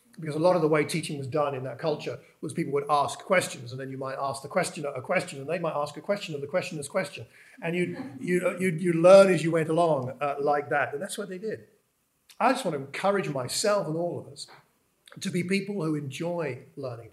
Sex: male